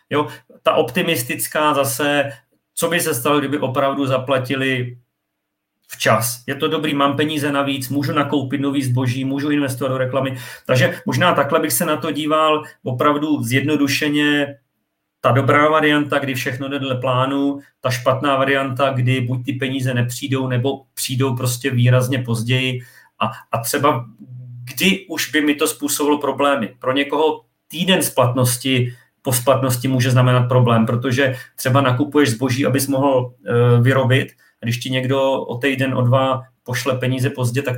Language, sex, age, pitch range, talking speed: Czech, male, 40-59, 125-145 Hz, 150 wpm